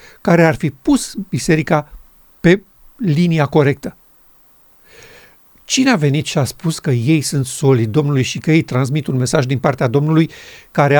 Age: 50-69